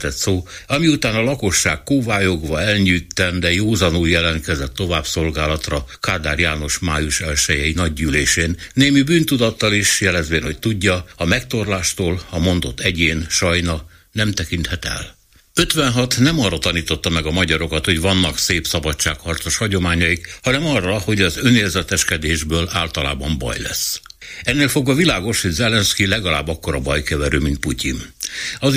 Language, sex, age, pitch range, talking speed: Hungarian, male, 60-79, 80-100 Hz, 130 wpm